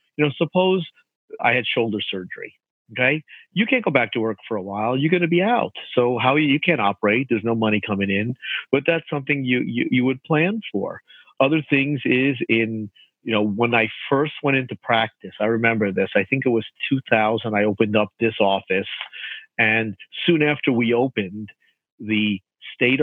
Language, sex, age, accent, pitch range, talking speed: English, male, 40-59, American, 110-135 Hz, 190 wpm